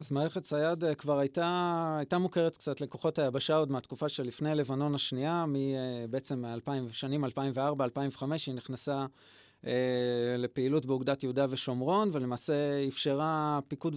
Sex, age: male, 20-39